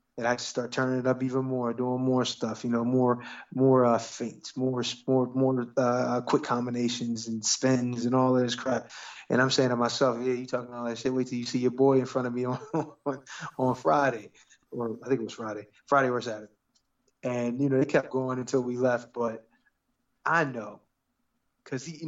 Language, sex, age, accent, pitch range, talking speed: English, male, 20-39, American, 120-130 Hz, 210 wpm